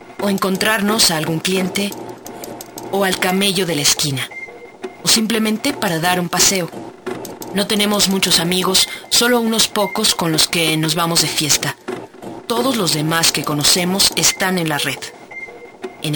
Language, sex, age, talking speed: Spanish, female, 30-49, 150 wpm